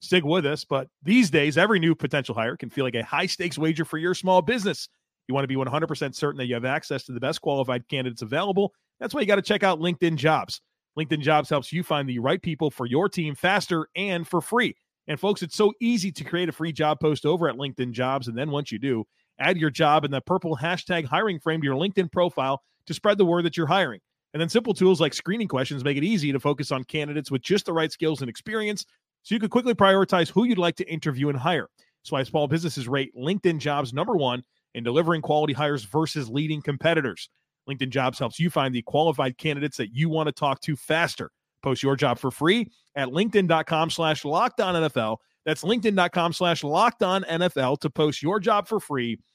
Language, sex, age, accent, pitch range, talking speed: English, male, 30-49, American, 140-180 Hz, 220 wpm